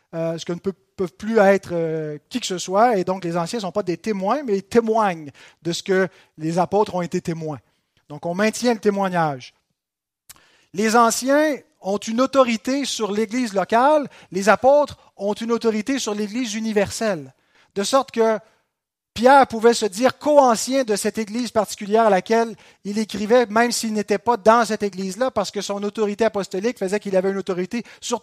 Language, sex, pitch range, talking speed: French, male, 170-230 Hz, 185 wpm